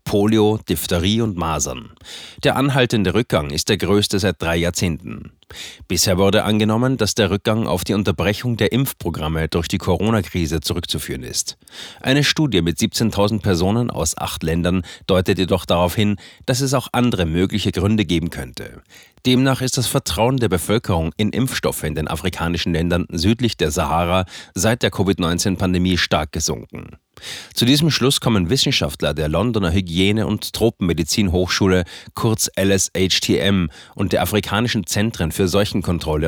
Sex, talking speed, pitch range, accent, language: male, 145 wpm, 85-110 Hz, German, German